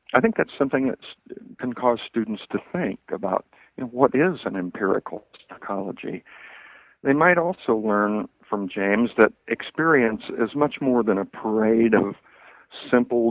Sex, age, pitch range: male, 50-69, 100-120 Hz